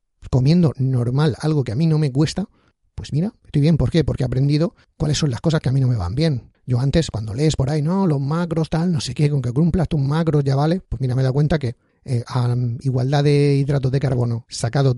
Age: 40-59